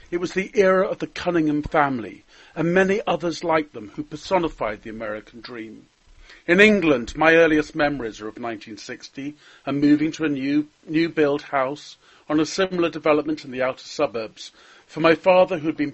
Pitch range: 145-175 Hz